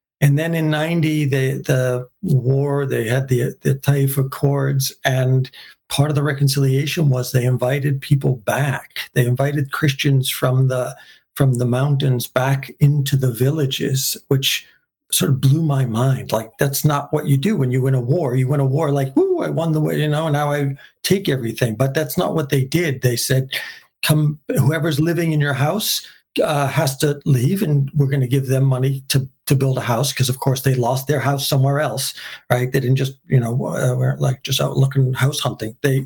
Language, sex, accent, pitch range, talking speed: English, male, American, 130-150 Hz, 200 wpm